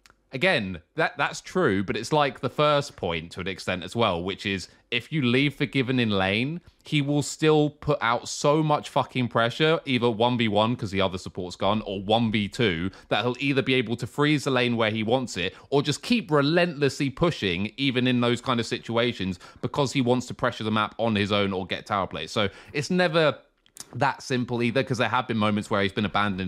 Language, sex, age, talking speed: English, male, 20-39, 215 wpm